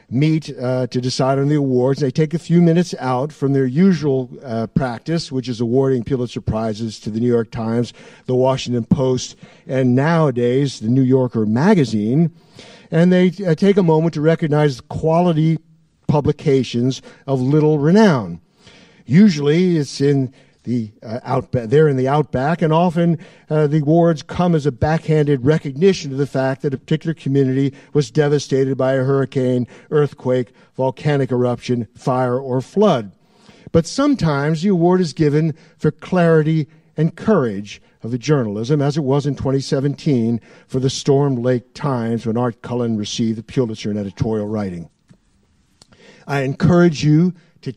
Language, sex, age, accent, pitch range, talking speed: English, male, 50-69, American, 125-160 Hz, 150 wpm